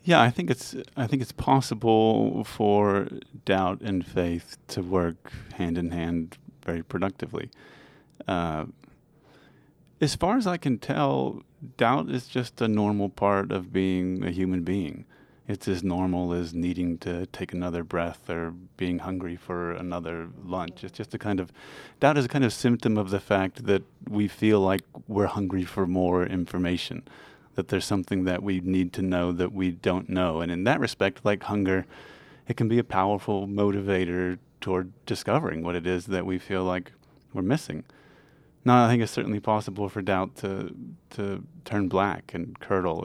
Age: 30-49